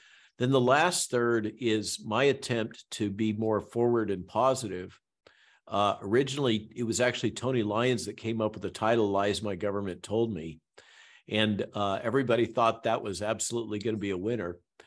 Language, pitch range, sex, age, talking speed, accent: English, 100-125 Hz, male, 50-69, 175 wpm, American